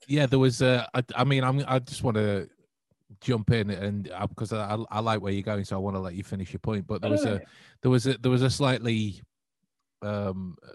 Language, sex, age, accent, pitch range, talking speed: English, male, 30-49, British, 100-150 Hz, 245 wpm